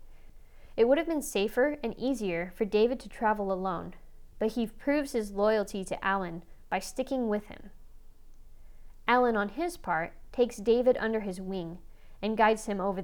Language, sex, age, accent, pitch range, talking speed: English, female, 20-39, American, 190-240 Hz, 165 wpm